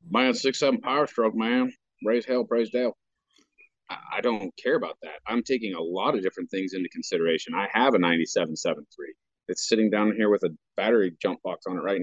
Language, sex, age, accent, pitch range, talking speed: English, male, 30-49, American, 95-120 Hz, 200 wpm